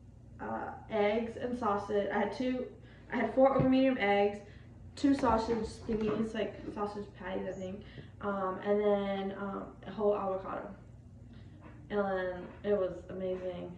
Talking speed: 150 wpm